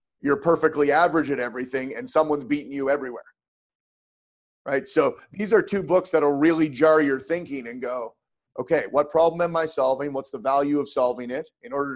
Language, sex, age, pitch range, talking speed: English, male, 30-49, 140-170 Hz, 185 wpm